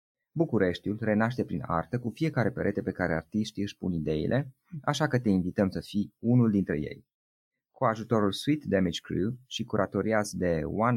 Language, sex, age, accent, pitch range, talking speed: Romanian, male, 30-49, native, 95-125 Hz, 170 wpm